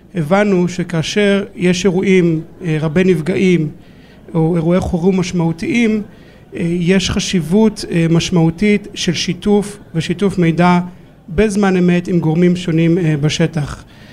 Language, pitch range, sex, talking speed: Hebrew, 165-190 Hz, male, 115 wpm